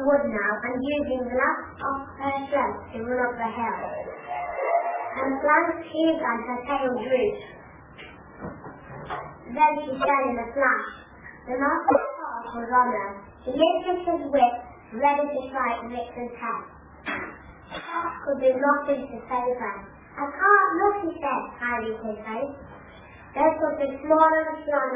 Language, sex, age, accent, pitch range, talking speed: English, female, 20-39, British, 235-295 Hz, 155 wpm